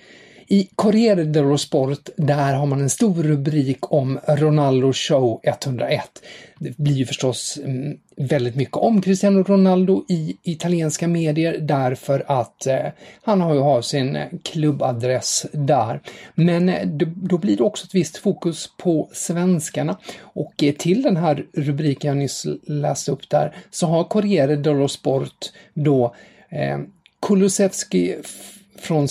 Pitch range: 140-175 Hz